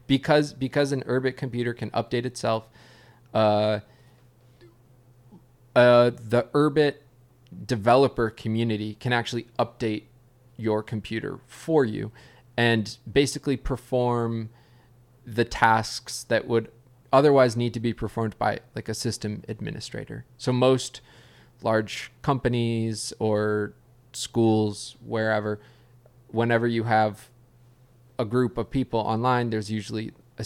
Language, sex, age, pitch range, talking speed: English, male, 20-39, 110-125 Hz, 110 wpm